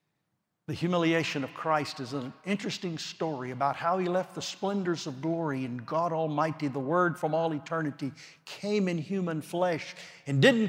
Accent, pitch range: American, 140-170 Hz